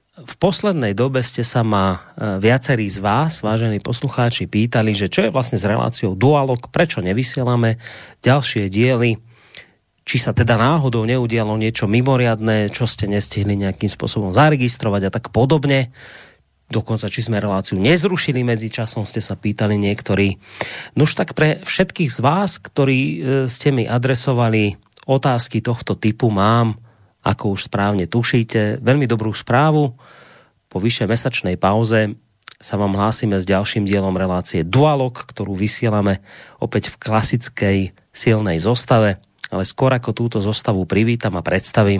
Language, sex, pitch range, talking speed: Slovak, male, 105-125 Hz, 140 wpm